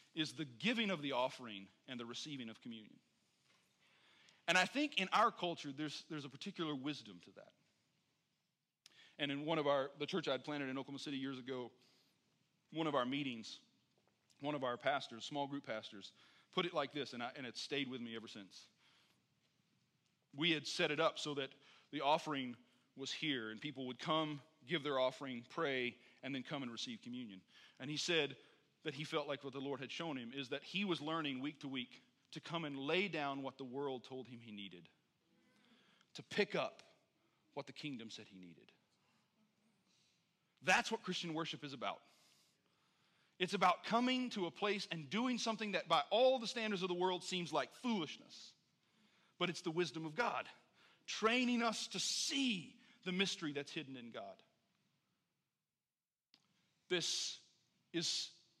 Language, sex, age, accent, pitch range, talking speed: English, male, 40-59, American, 135-185 Hz, 175 wpm